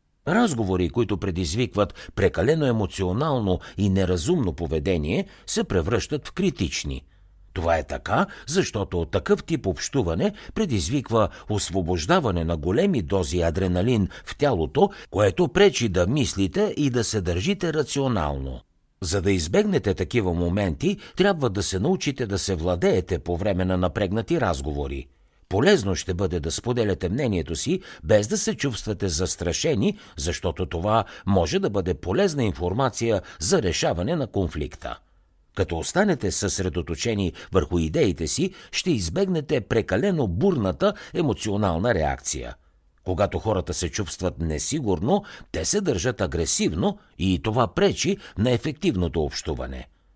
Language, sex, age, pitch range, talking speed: Bulgarian, male, 60-79, 90-125 Hz, 125 wpm